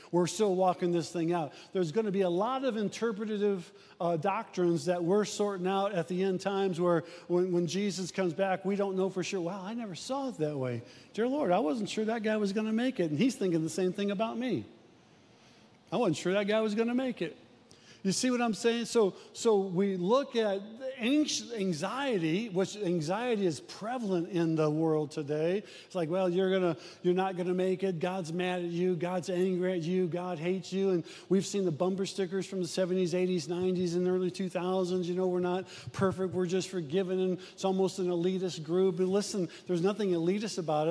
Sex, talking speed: male, 215 wpm